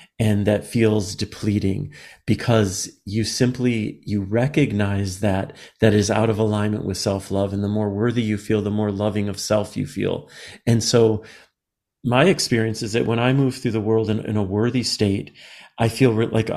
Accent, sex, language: American, male, English